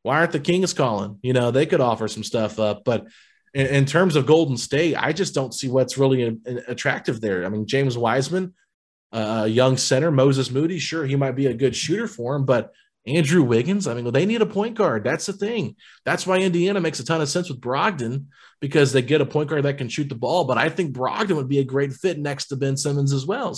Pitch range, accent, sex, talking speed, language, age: 125-150 Hz, American, male, 240 wpm, English, 20-39